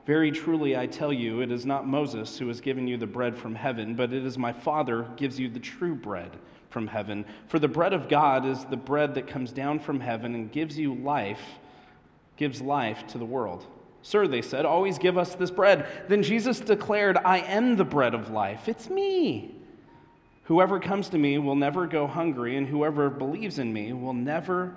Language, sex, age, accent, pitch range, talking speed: English, male, 30-49, American, 130-170 Hz, 210 wpm